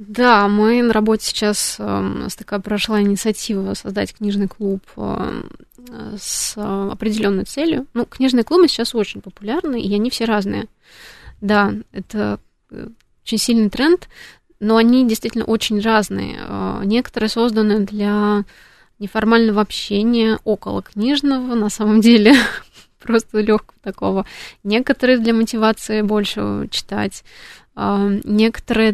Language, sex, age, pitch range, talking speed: Russian, female, 20-39, 200-225 Hz, 110 wpm